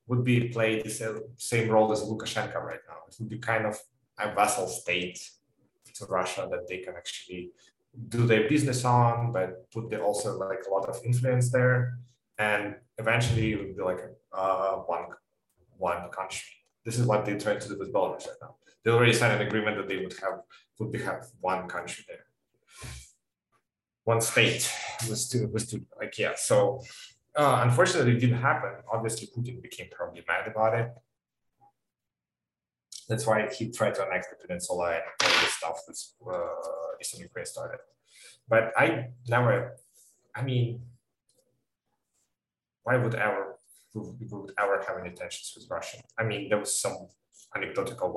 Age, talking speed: 30-49, 160 wpm